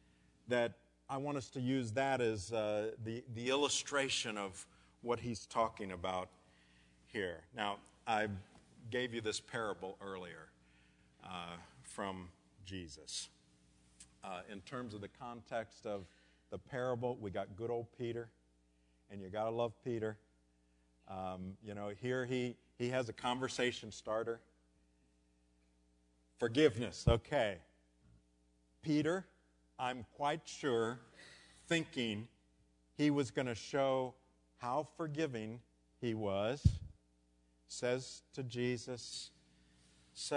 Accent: American